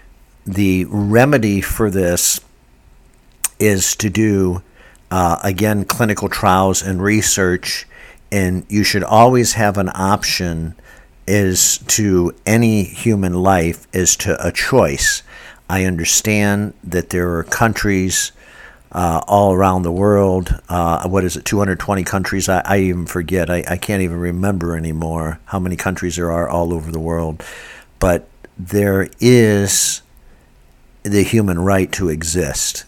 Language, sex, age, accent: English, male, 60-79, American